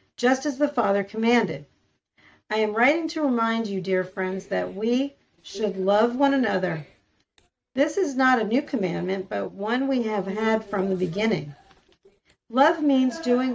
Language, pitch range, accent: English, 195-250 Hz, American